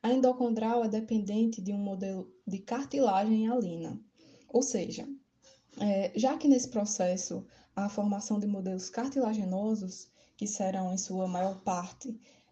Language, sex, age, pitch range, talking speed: Portuguese, female, 10-29, 200-260 Hz, 130 wpm